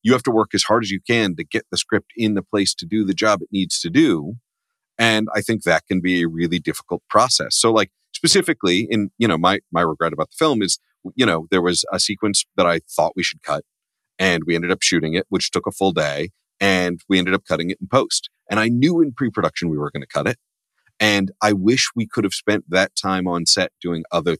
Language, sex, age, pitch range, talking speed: English, male, 40-59, 85-105 Hz, 250 wpm